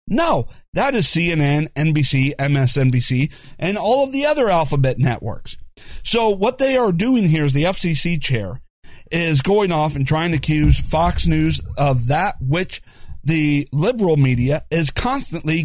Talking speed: 155 wpm